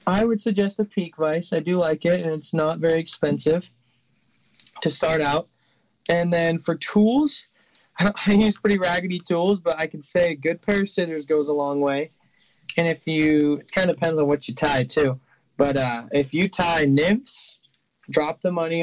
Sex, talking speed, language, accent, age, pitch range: male, 200 wpm, English, American, 20-39, 135-160 Hz